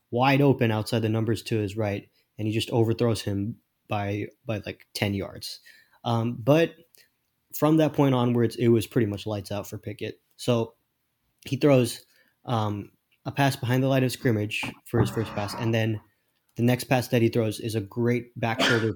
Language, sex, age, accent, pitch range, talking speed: English, male, 20-39, American, 105-125 Hz, 190 wpm